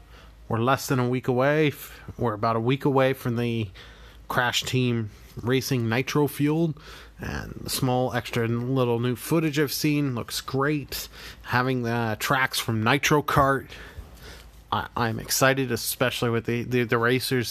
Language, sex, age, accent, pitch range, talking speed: English, male, 30-49, American, 115-135 Hz, 145 wpm